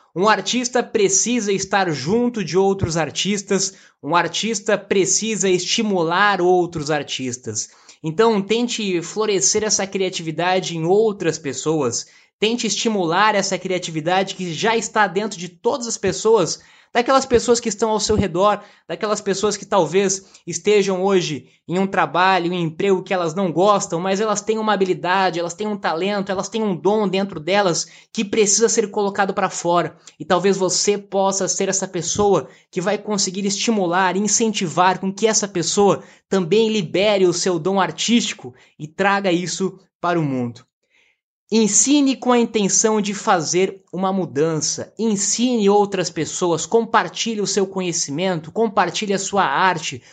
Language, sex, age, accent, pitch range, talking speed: Portuguese, male, 20-39, Brazilian, 175-210 Hz, 150 wpm